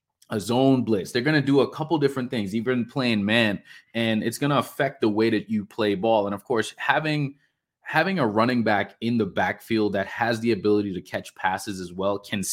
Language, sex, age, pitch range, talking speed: English, male, 20-39, 95-115 Hz, 220 wpm